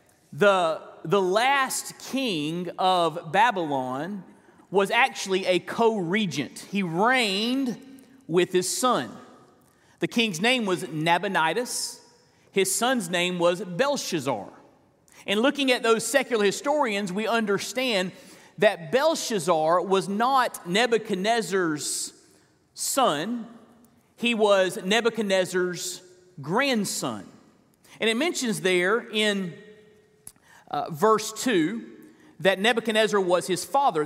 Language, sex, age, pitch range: English, male, 40-59, 180-235 Hz